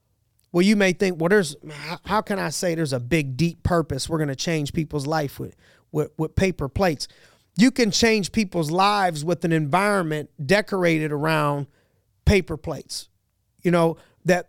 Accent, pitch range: American, 155-190 Hz